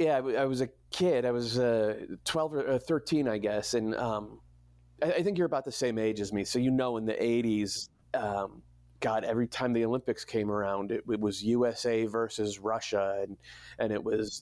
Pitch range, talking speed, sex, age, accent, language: 100-115 Hz, 210 wpm, male, 30-49, American, English